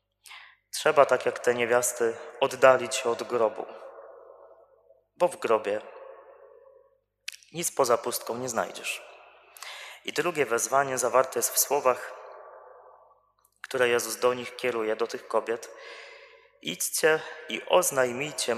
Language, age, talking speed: Polish, 20-39, 115 wpm